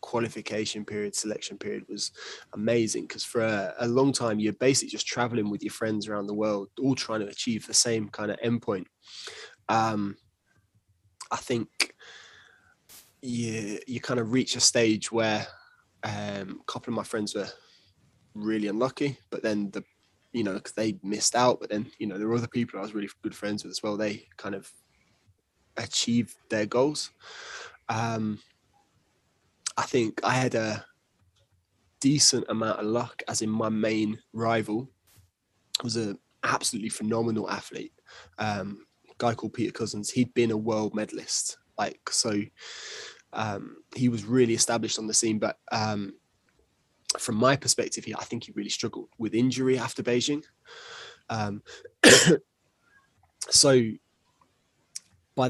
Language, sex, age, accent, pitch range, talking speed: English, male, 20-39, British, 105-120 Hz, 150 wpm